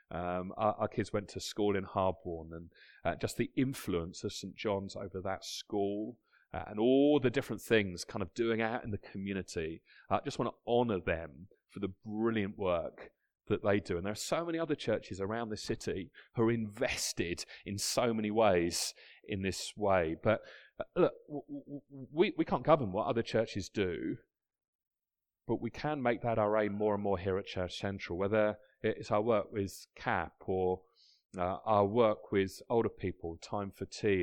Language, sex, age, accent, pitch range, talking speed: English, male, 30-49, British, 100-140 Hz, 195 wpm